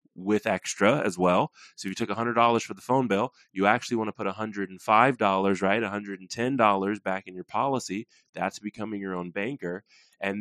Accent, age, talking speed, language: American, 20-39, 180 wpm, English